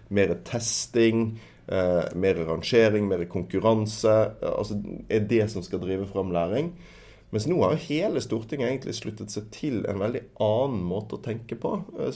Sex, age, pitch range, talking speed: male, 30-49, 95-115 Hz, 165 wpm